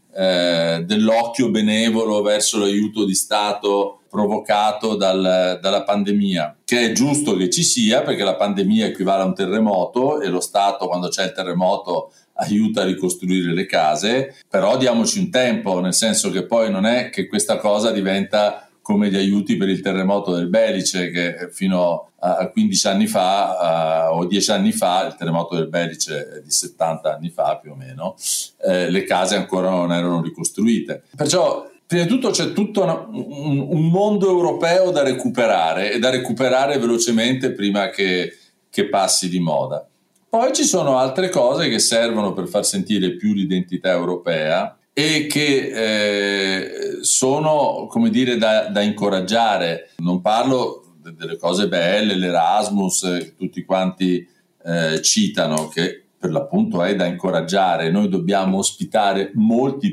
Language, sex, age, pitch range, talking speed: Italian, male, 40-59, 95-135 Hz, 145 wpm